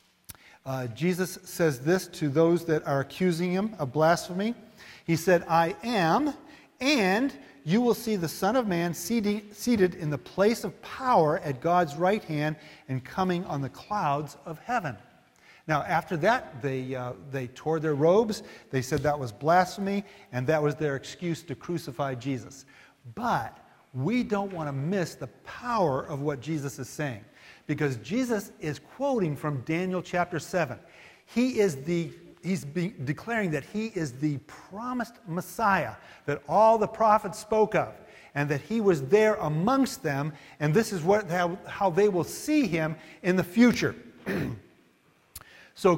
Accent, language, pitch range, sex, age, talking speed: American, English, 150-210 Hz, male, 50-69, 155 wpm